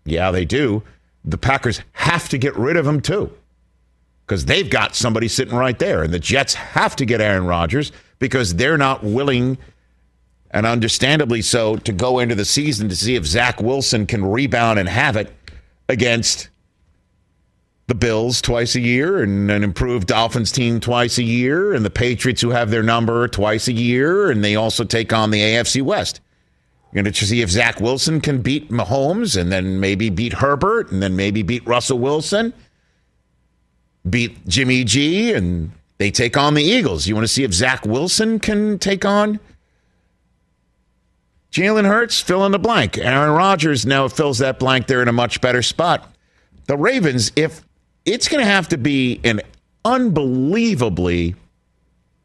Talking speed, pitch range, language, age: 170 wpm, 95-135 Hz, English, 50-69